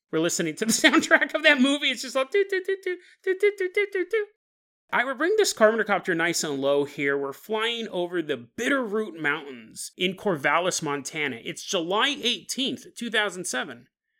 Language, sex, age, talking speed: English, male, 30-49, 180 wpm